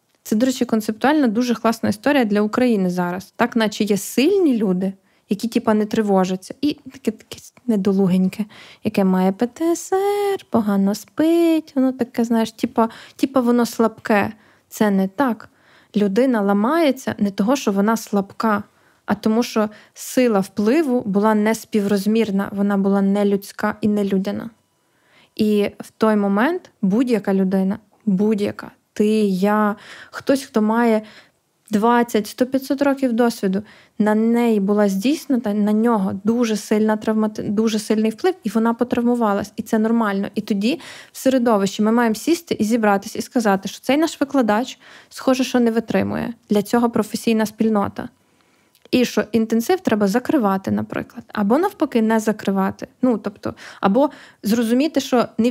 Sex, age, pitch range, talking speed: female, 20-39, 205-250 Hz, 140 wpm